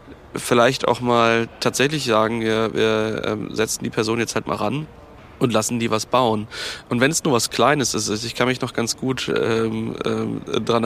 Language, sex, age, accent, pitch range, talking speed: German, male, 20-39, German, 110-125 Hz, 195 wpm